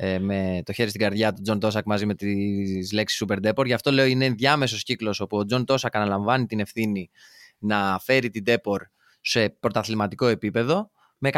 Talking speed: 185 wpm